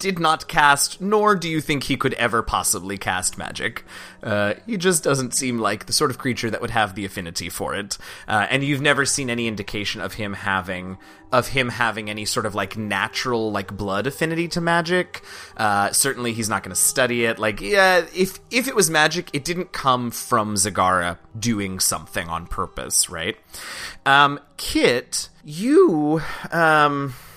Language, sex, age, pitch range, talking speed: English, male, 30-49, 105-150 Hz, 180 wpm